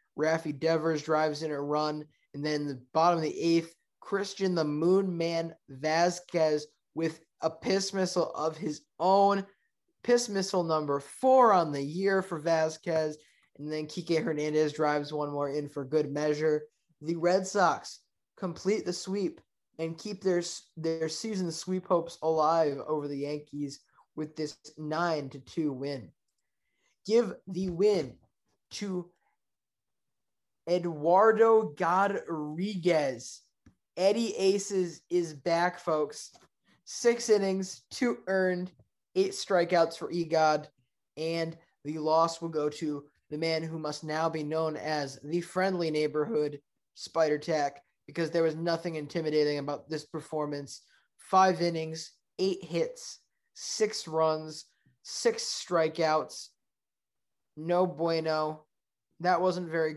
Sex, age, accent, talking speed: male, 20-39, American, 125 wpm